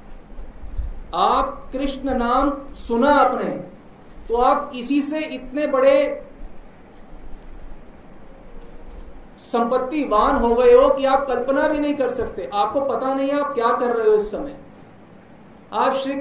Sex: male